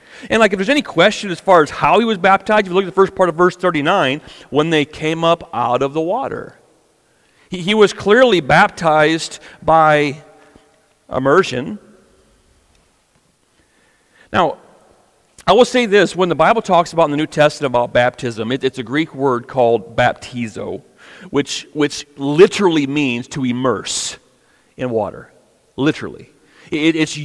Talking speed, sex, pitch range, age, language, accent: 155 wpm, male, 145-185 Hz, 40-59, English, American